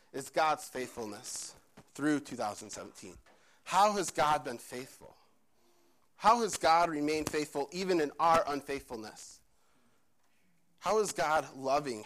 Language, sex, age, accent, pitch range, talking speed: English, male, 30-49, American, 130-160 Hz, 115 wpm